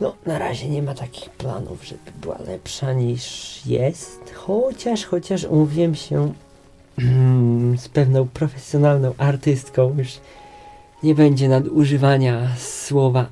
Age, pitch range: 20-39, 125-145 Hz